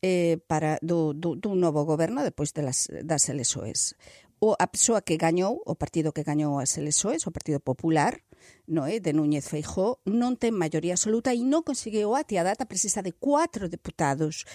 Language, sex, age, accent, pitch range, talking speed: Portuguese, female, 50-69, Spanish, 160-240 Hz, 190 wpm